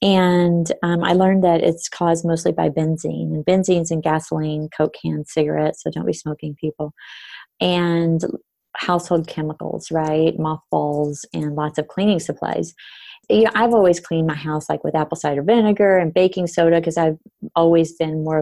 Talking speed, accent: 170 wpm, American